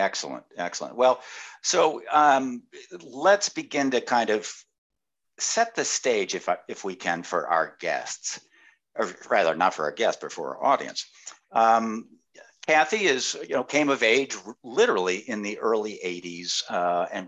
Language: English